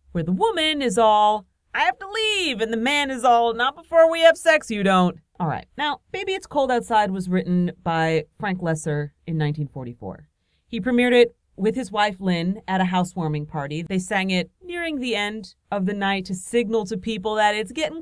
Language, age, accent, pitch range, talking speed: English, 40-59, American, 175-255 Hz, 205 wpm